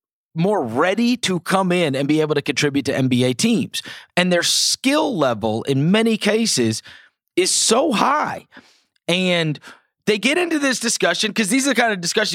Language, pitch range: English, 140-195 Hz